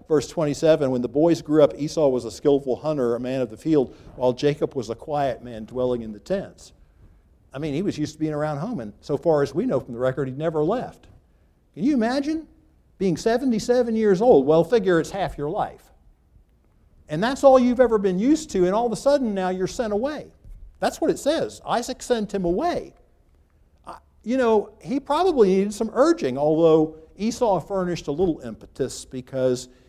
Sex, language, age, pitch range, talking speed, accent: male, English, 60-79, 130-200 Hz, 200 wpm, American